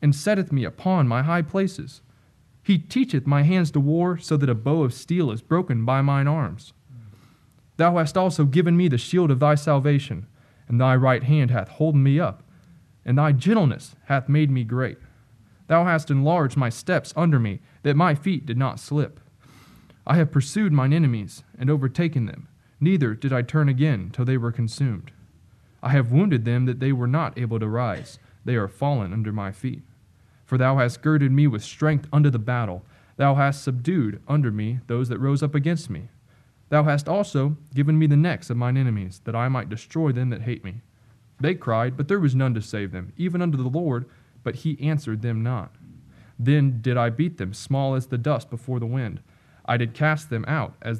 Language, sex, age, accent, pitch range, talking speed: English, male, 20-39, American, 120-150 Hz, 200 wpm